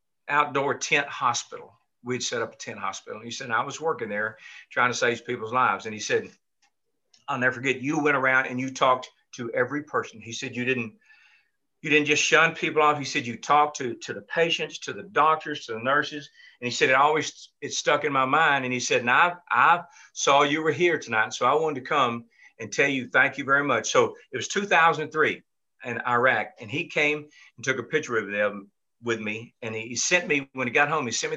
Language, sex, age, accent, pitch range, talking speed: English, male, 50-69, American, 120-155 Hz, 230 wpm